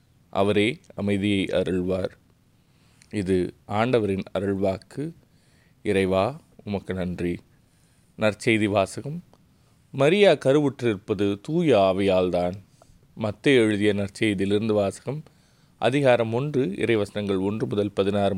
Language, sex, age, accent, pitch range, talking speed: Tamil, male, 20-39, native, 100-130 Hz, 85 wpm